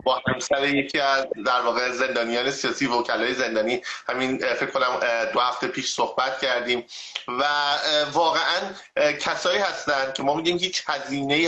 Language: English